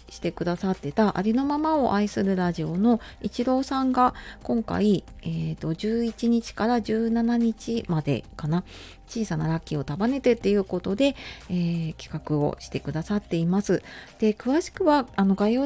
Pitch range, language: 160-220 Hz, Japanese